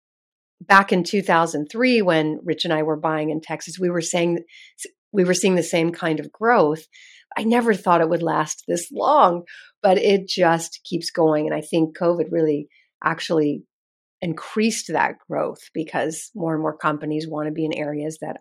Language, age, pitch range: English, 40-59, 155-200 Hz